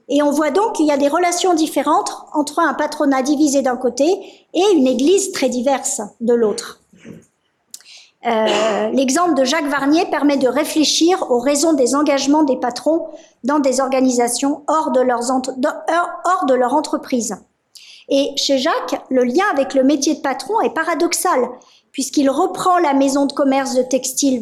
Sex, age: male, 50-69